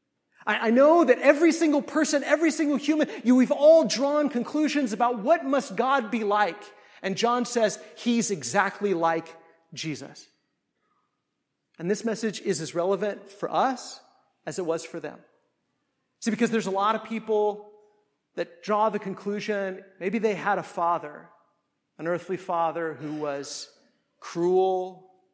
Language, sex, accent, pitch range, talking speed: English, male, American, 175-250 Hz, 145 wpm